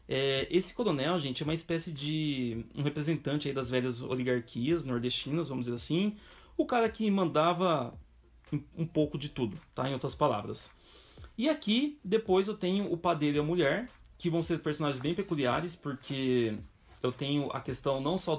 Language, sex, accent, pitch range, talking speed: Portuguese, male, Brazilian, 125-170 Hz, 175 wpm